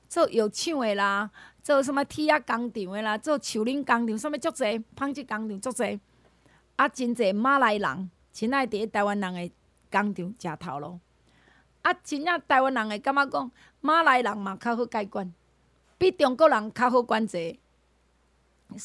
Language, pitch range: Chinese, 205-275 Hz